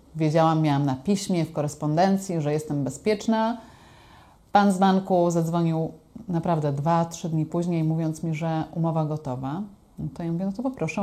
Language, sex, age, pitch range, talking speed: Polish, female, 30-49, 155-195 Hz, 165 wpm